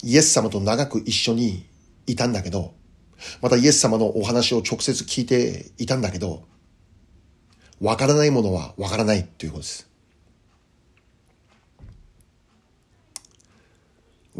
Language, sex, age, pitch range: Japanese, male, 40-59, 95-130 Hz